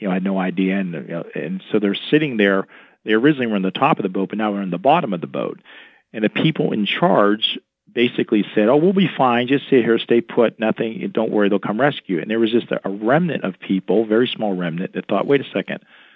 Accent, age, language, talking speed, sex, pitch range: American, 40-59, English, 260 wpm, male, 95-115 Hz